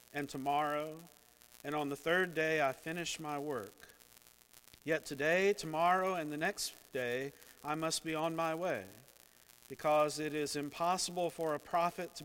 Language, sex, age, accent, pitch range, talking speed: English, male, 50-69, American, 120-165 Hz, 155 wpm